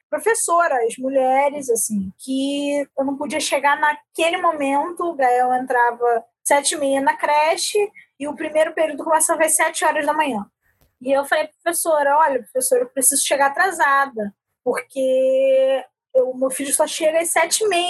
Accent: Brazilian